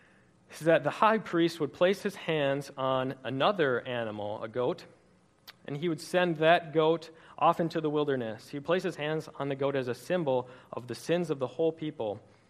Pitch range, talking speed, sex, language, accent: 125-160 Hz, 200 wpm, male, English, American